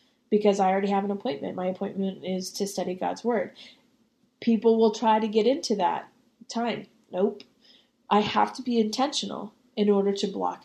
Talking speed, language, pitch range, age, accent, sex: 175 wpm, English, 195-225 Hz, 30-49, American, female